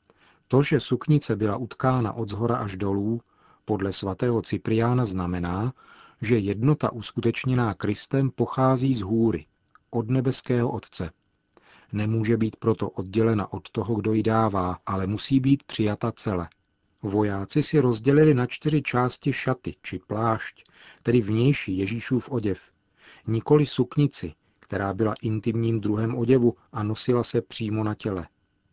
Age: 40-59